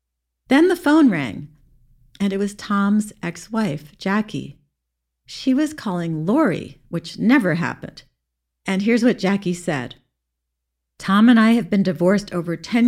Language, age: English, 50-69